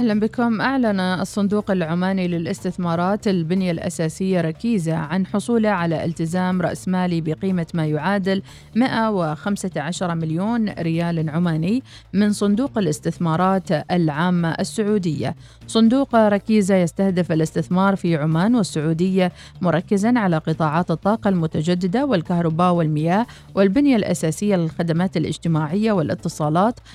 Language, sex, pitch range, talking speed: Arabic, female, 165-210 Hz, 100 wpm